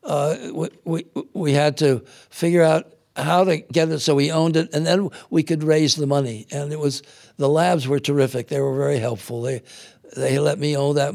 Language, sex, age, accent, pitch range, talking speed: English, male, 60-79, American, 135-165 Hz, 210 wpm